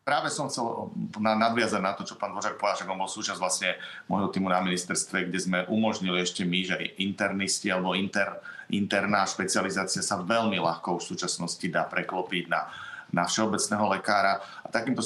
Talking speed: 170 wpm